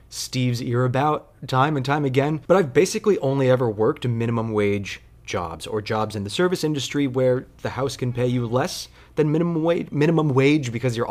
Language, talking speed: English, 195 wpm